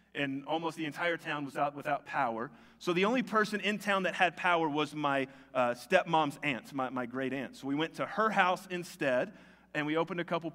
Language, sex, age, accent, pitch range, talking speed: English, male, 30-49, American, 145-205 Hz, 220 wpm